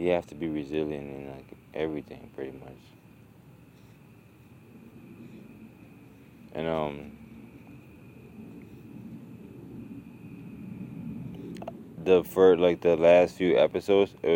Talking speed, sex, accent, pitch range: 85 wpm, male, American, 75-90 Hz